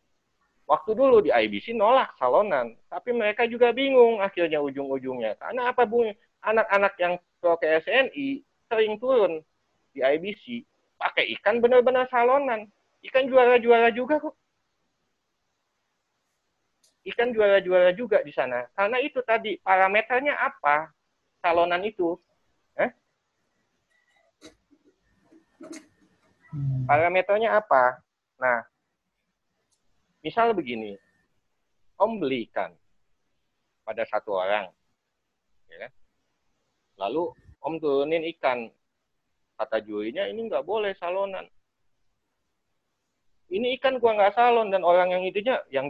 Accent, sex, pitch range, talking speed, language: native, male, 170-245 Hz, 100 wpm, Indonesian